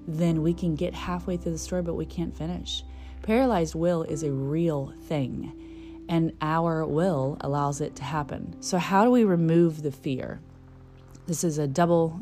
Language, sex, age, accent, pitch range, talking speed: English, female, 30-49, American, 140-180 Hz, 175 wpm